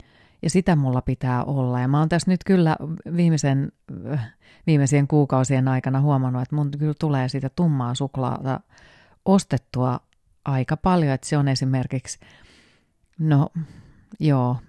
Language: Finnish